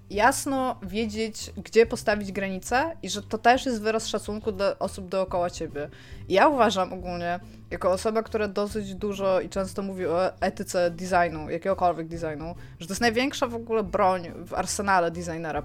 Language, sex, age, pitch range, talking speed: Polish, female, 20-39, 175-220 Hz, 165 wpm